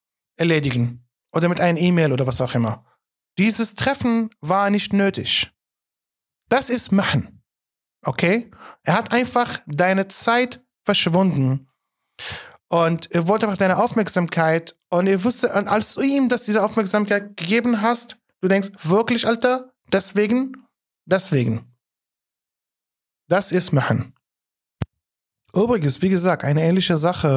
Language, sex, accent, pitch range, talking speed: German, male, German, 140-200 Hz, 125 wpm